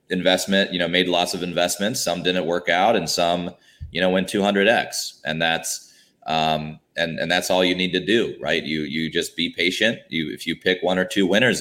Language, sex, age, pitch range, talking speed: English, male, 30-49, 80-95 Hz, 220 wpm